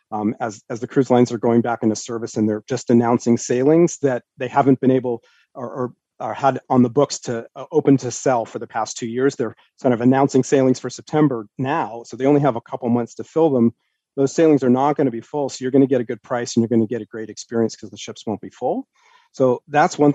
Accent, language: American, English